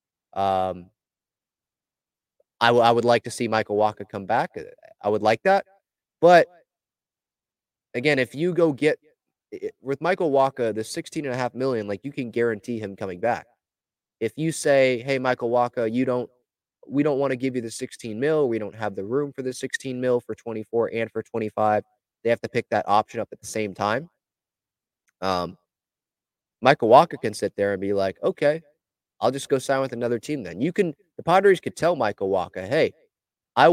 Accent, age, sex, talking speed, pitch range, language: American, 20-39, male, 195 wpm, 110-140 Hz, English